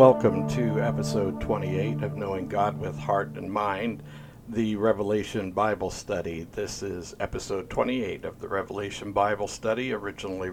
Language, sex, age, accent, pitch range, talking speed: English, male, 60-79, American, 100-115 Hz, 140 wpm